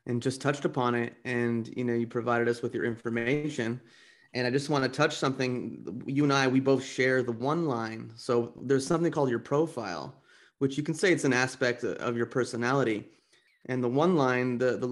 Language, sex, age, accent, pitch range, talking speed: English, male, 30-49, American, 125-145 Hz, 210 wpm